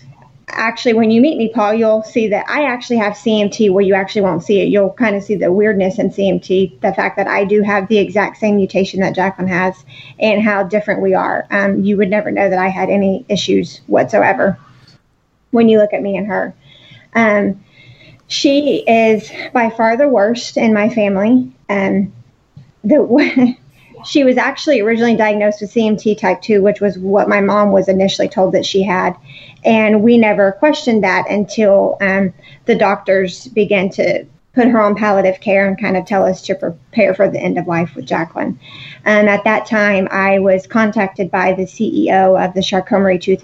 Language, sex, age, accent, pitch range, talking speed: English, female, 30-49, American, 190-220 Hz, 190 wpm